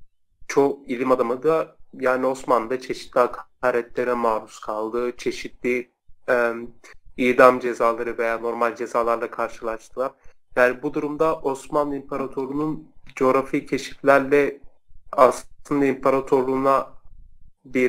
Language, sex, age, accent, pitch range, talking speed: Turkish, male, 40-59, native, 120-145 Hz, 95 wpm